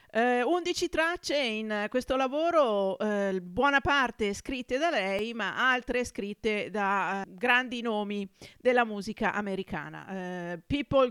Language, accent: Italian, native